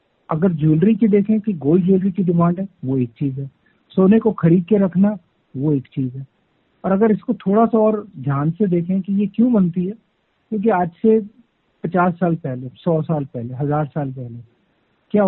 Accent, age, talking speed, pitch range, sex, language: native, 50-69, 200 wpm, 150-190 Hz, male, Hindi